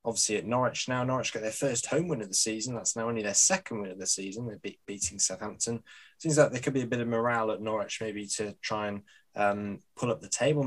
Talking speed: 260 wpm